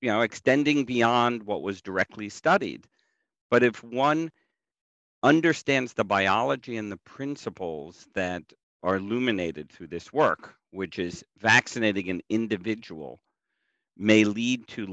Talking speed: 125 wpm